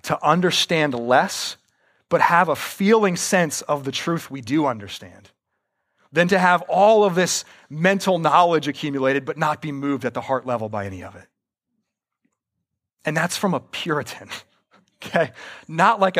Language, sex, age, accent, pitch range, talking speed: English, male, 30-49, American, 150-210 Hz, 160 wpm